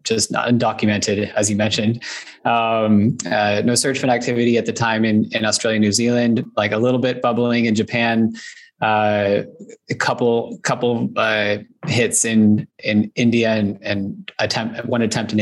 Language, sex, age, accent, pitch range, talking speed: English, male, 20-39, American, 105-120 Hz, 165 wpm